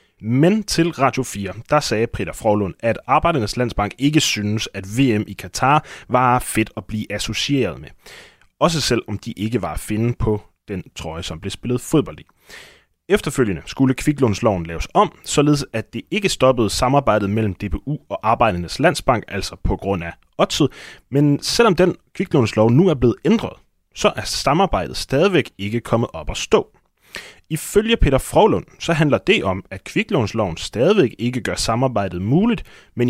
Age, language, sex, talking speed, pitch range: 20-39, Danish, male, 165 wpm, 105-135 Hz